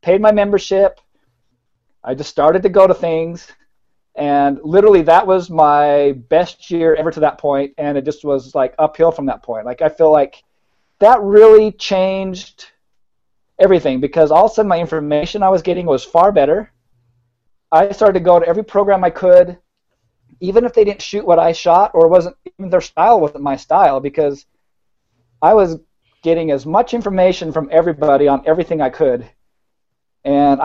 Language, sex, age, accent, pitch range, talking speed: English, male, 40-59, American, 145-190 Hz, 175 wpm